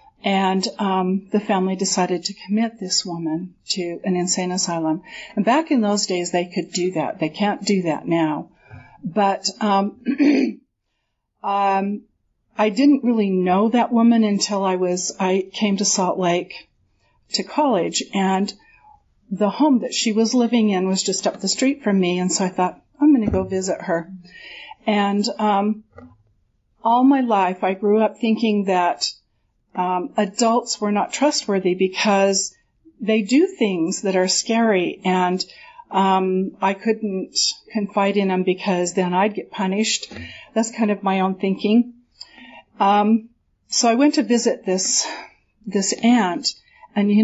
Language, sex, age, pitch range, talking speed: English, female, 50-69, 185-230 Hz, 155 wpm